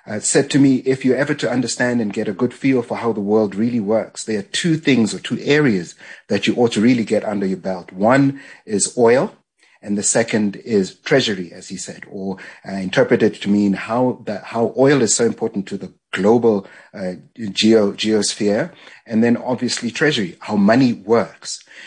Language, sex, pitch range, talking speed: English, male, 100-115 Hz, 200 wpm